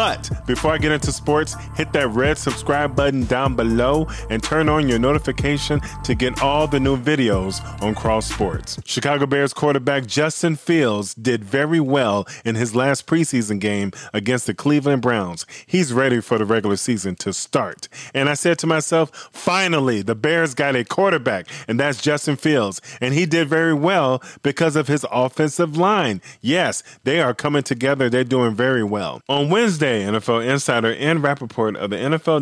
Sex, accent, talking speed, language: male, American, 175 wpm, English